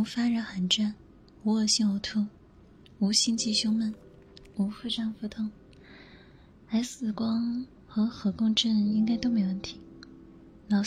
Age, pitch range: 20-39, 190-225 Hz